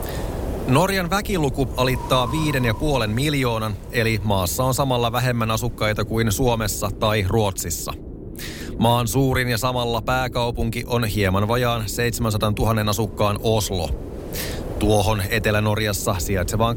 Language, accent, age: Finnish, native, 30-49